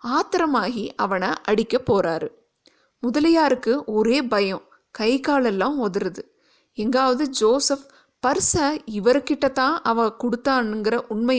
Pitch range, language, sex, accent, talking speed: 220-275 Hz, Tamil, female, native, 75 wpm